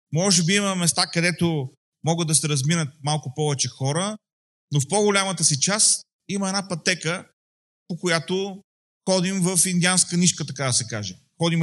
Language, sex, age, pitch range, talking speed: Bulgarian, male, 30-49, 150-180 Hz, 160 wpm